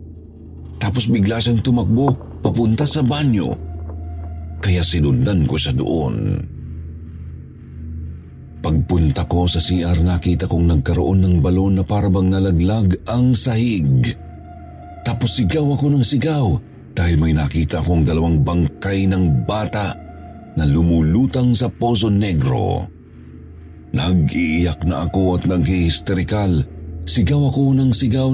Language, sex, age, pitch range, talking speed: Filipino, male, 40-59, 80-110 Hz, 110 wpm